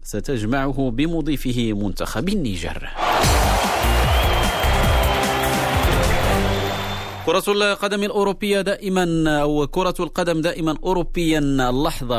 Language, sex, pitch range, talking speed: Arabic, male, 105-150 Hz, 65 wpm